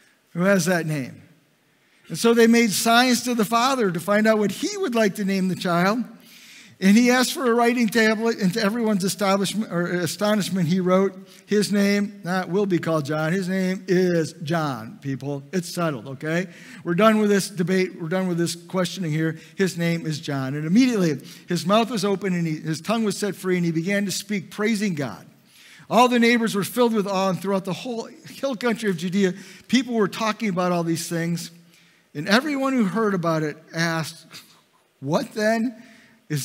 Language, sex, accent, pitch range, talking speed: English, male, American, 170-215 Hz, 195 wpm